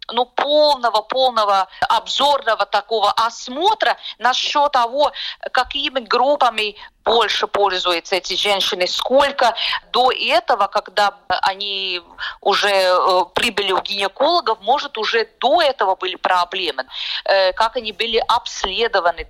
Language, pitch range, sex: Russian, 195-270 Hz, female